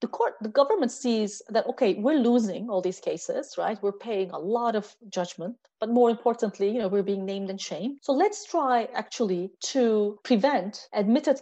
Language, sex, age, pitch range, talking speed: Turkish, female, 30-49, 205-275 Hz, 190 wpm